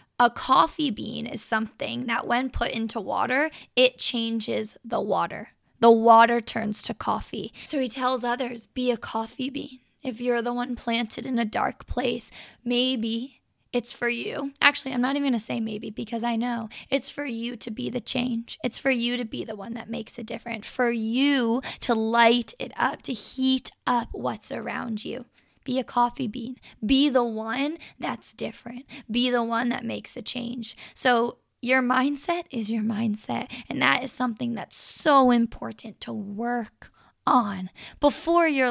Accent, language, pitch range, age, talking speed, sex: American, English, 230-260 Hz, 10-29, 180 wpm, female